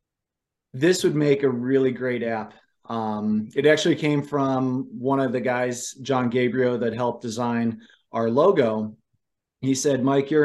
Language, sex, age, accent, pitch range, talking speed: English, male, 30-49, American, 115-135 Hz, 155 wpm